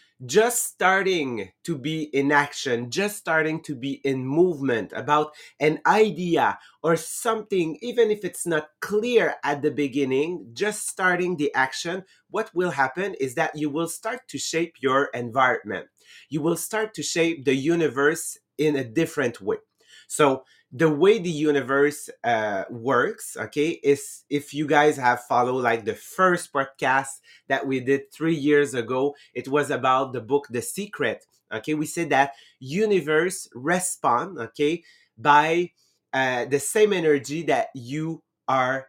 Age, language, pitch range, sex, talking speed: 30-49, English, 135-170 Hz, male, 150 wpm